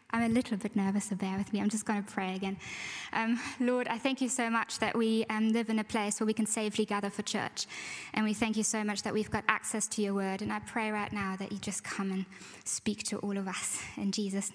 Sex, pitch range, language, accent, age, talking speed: female, 210-240 Hz, English, British, 10-29, 270 wpm